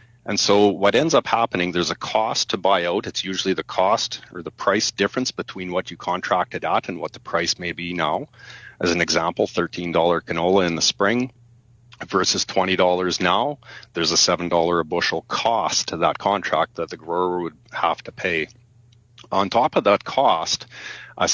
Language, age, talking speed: English, 40-59, 185 wpm